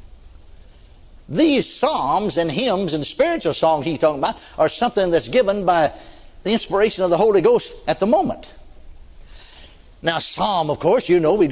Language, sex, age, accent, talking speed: English, male, 60-79, American, 160 wpm